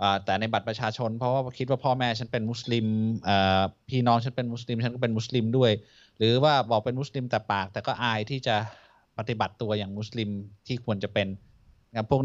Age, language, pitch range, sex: 20-39, Thai, 105-125 Hz, male